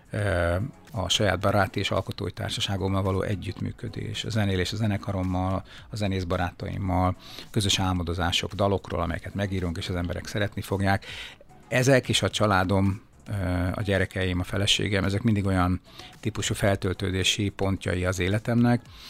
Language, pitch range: Hungarian, 95-110 Hz